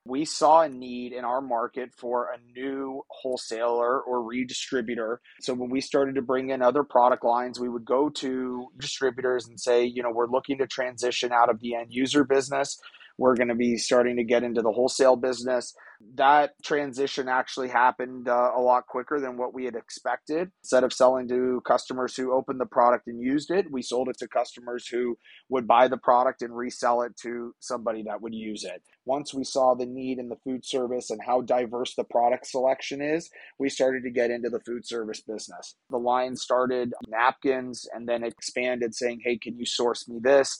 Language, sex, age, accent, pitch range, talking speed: English, male, 30-49, American, 120-130 Hz, 200 wpm